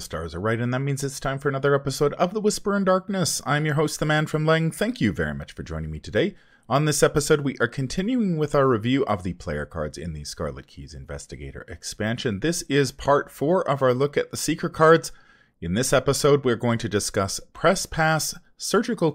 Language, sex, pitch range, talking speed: English, male, 95-160 Hz, 225 wpm